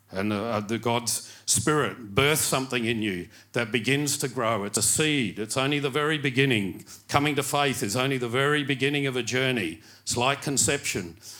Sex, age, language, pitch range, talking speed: male, 50-69, English, 105-135 Hz, 185 wpm